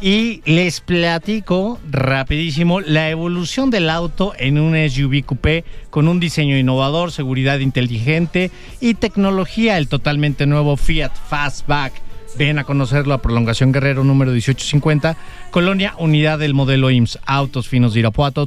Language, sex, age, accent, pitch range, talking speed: English, male, 40-59, Mexican, 125-165 Hz, 135 wpm